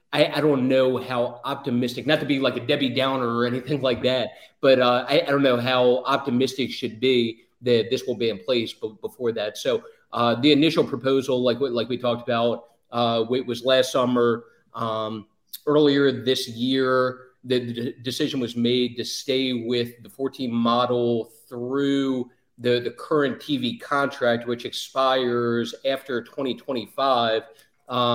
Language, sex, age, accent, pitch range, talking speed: English, male, 30-49, American, 125-145 Hz, 165 wpm